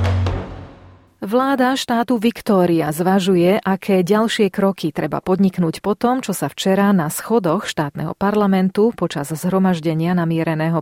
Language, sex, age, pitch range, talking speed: Slovak, female, 40-59, 165-205 Hz, 110 wpm